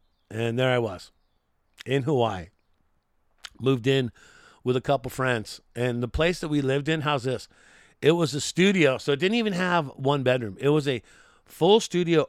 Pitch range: 120-155 Hz